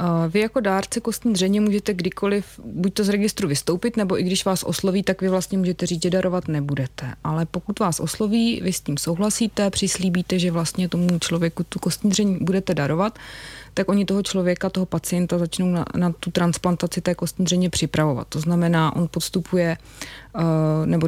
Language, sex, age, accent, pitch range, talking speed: Czech, female, 20-39, native, 165-185 Hz, 180 wpm